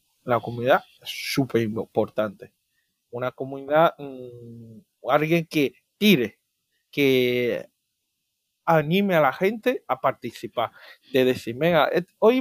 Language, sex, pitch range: Spanish, male, 135-205 Hz